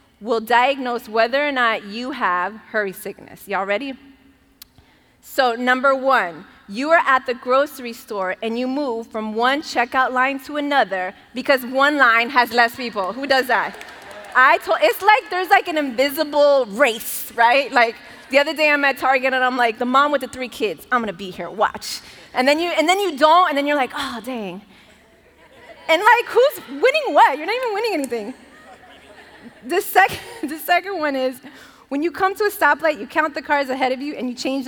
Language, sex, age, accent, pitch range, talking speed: English, female, 20-39, American, 245-335 Hz, 195 wpm